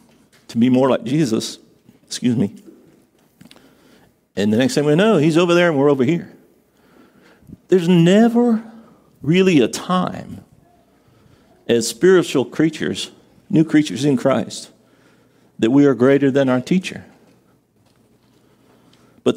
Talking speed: 125 wpm